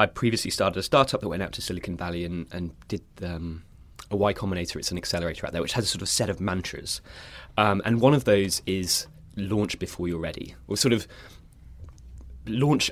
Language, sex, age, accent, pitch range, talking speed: English, male, 20-39, British, 85-105 Hz, 210 wpm